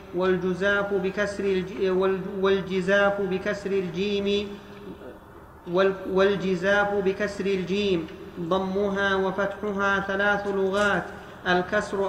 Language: Arabic